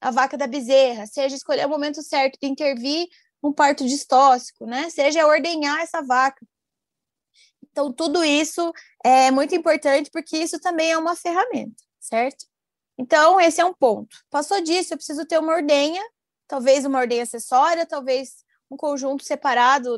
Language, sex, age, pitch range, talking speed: Portuguese, female, 20-39, 255-315 Hz, 155 wpm